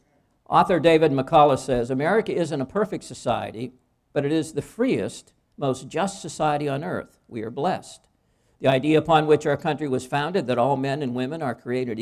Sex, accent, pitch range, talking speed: male, American, 125-155 Hz, 185 wpm